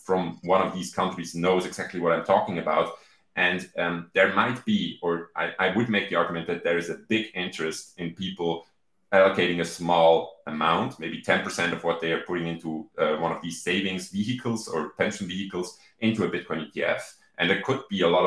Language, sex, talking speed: English, male, 205 wpm